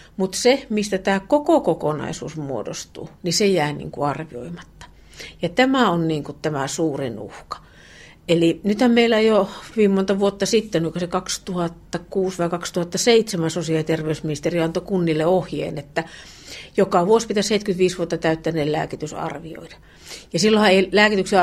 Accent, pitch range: native, 165-215 Hz